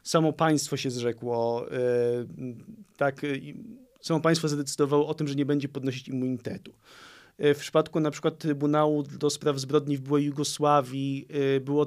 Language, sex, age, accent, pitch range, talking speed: Polish, male, 40-59, native, 140-175 Hz, 135 wpm